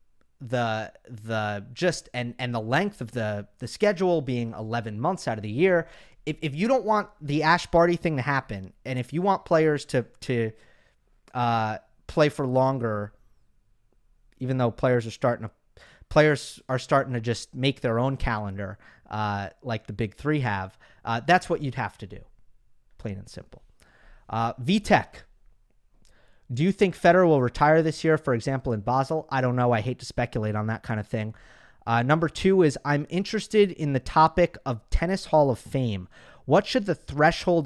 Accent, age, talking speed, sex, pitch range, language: American, 30-49, 185 wpm, male, 110-150 Hz, English